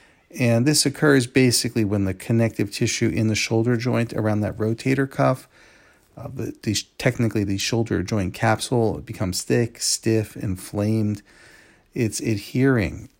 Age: 40-59